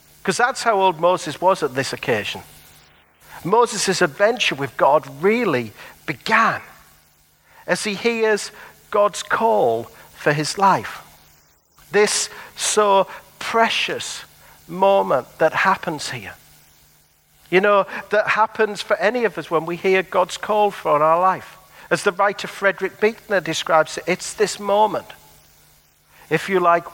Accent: British